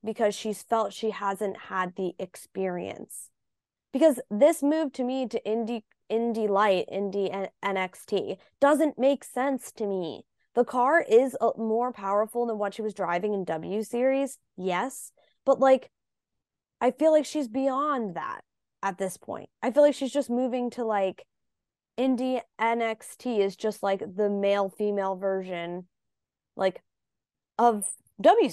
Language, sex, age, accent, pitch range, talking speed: English, female, 20-39, American, 180-235 Hz, 145 wpm